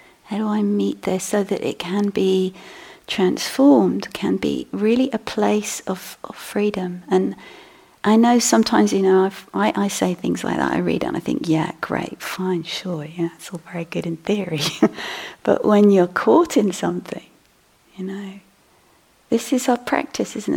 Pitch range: 180-210 Hz